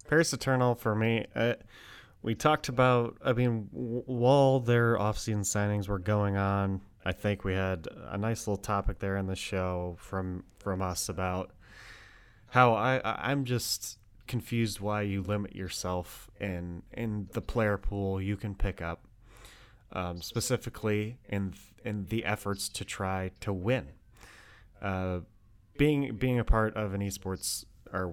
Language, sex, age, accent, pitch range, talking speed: English, male, 30-49, American, 95-115 Hz, 150 wpm